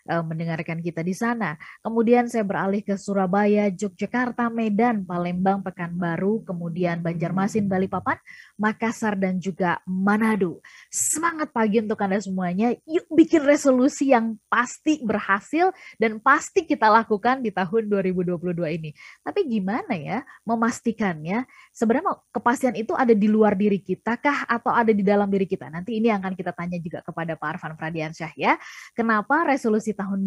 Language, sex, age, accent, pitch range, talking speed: Indonesian, female, 20-39, native, 185-235 Hz, 145 wpm